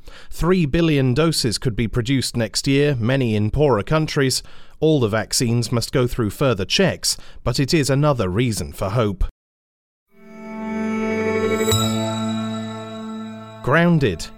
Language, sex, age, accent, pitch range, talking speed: English, male, 30-49, British, 110-145 Hz, 115 wpm